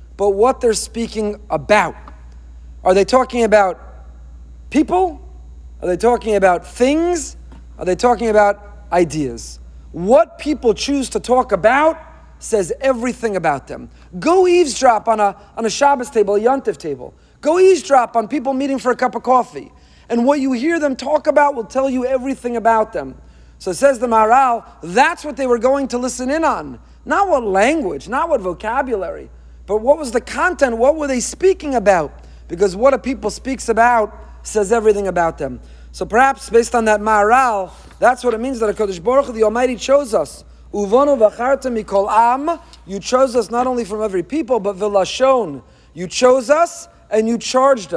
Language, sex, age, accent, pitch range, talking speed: English, male, 40-59, American, 200-270 Hz, 170 wpm